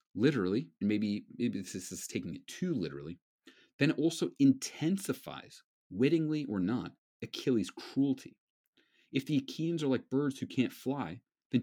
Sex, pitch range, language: male, 105-160 Hz, English